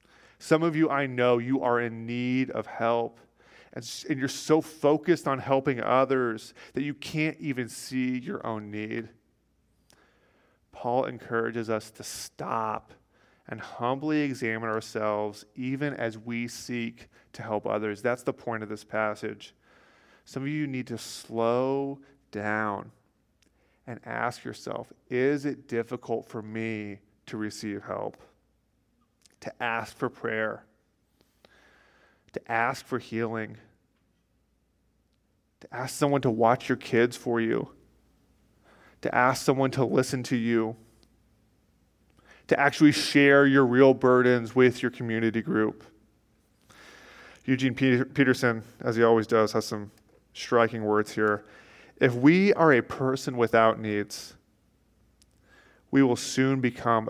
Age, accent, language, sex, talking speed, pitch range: 30-49, American, English, male, 130 wpm, 110-130 Hz